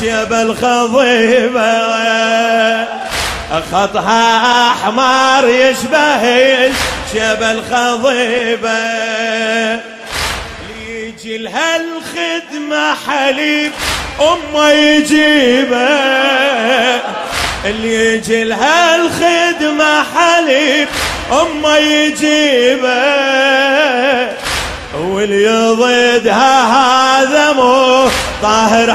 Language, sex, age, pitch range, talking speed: Arabic, male, 30-49, 225-280 Hz, 45 wpm